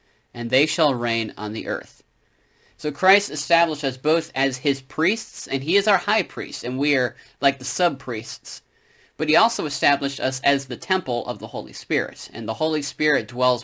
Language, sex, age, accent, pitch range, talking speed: English, male, 30-49, American, 120-150 Hz, 195 wpm